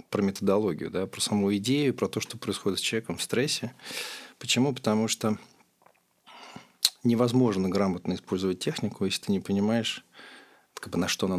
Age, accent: 40-59, native